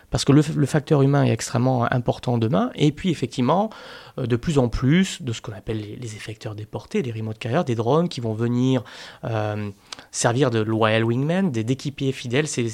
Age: 30-49